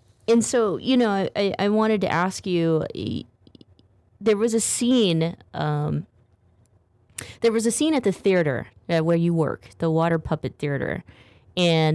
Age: 20-39